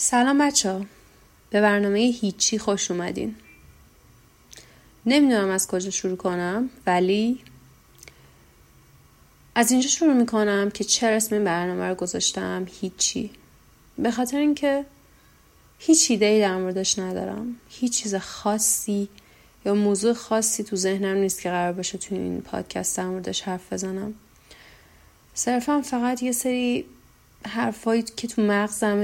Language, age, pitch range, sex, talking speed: Persian, 30-49, 190-240 Hz, female, 125 wpm